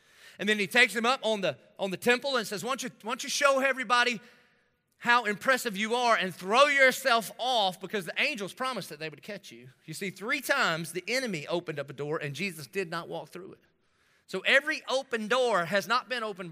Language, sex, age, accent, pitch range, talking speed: English, male, 30-49, American, 165-235 Hz, 230 wpm